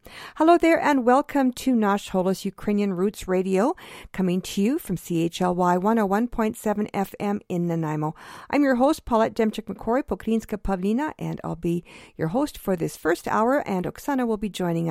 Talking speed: 155 wpm